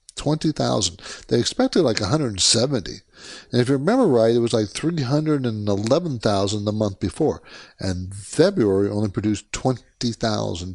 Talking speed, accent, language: 125 wpm, American, English